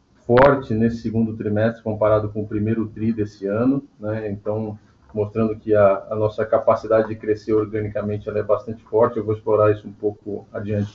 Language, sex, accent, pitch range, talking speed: Portuguese, male, Brazilian, 110-120 Hz, 180 wpm